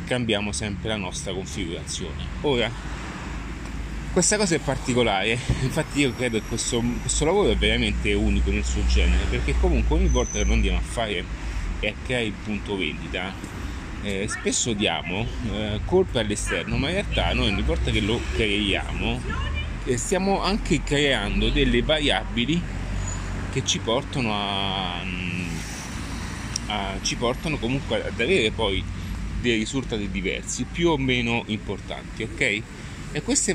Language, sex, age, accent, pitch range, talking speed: Italian, male, 30-49, native, 90-120 Hz, 140 wpm